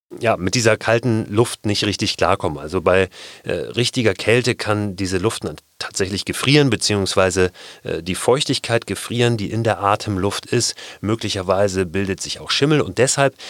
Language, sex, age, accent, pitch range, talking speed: German, male, 30-49, German, 105-130 Hz, 160 wpm